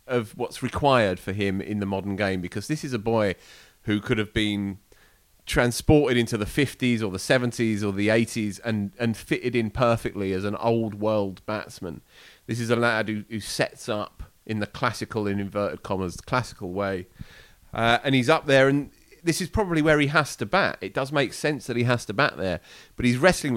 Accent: British